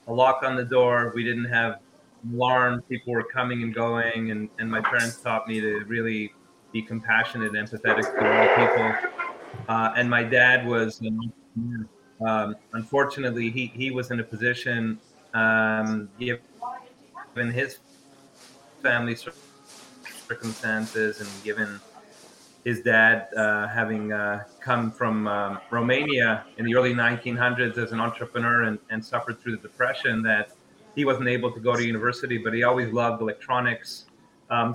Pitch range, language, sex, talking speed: 110-125 Hz, English, male, 150 wpm